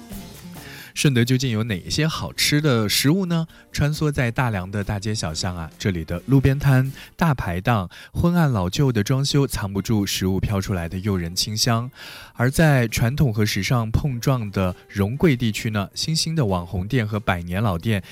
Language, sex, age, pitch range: Chinese, male, 20-39, 95-135 Hz